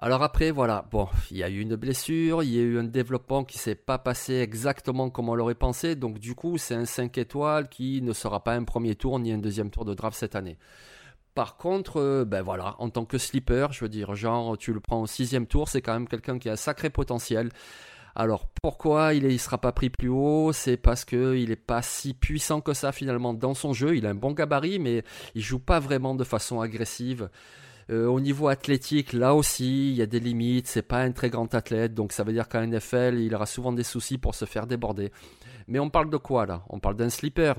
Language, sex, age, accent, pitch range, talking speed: French, male, 30-49, French, 115-135 Hz, 245 wpm